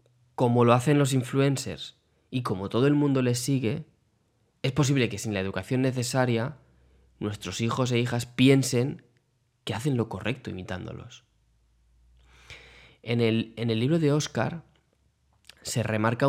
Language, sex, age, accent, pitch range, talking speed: Spanish, male, 20-39, Spanish, 105-125 Hz, 135 wpm